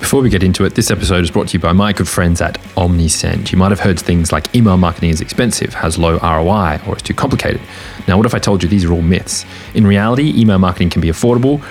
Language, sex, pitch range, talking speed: English, male, 90-105 Hz, 260 wpm